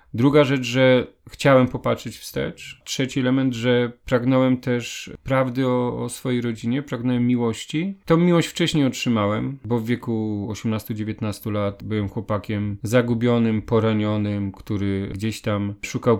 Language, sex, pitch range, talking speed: Polish, male, 105-135 Hz, 130 wpm